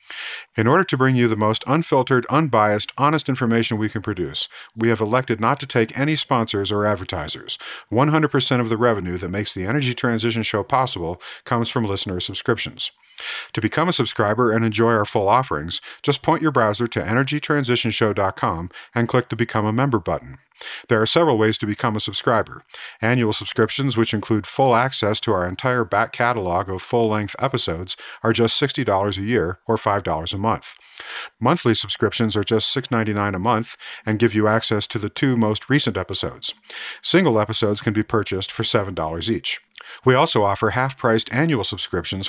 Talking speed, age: 175 wpm, 50-69